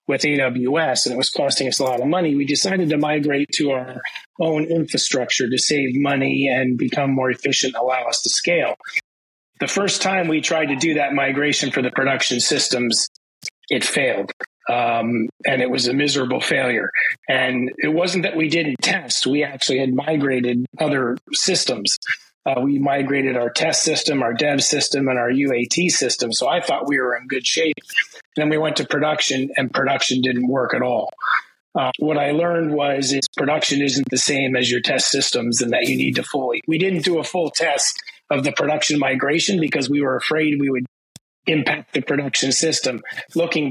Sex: male